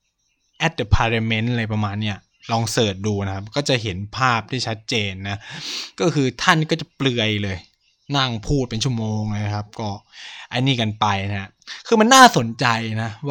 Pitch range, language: 110-160 Hz, Thai